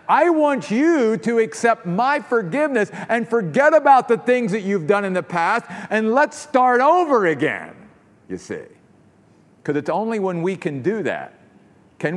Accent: American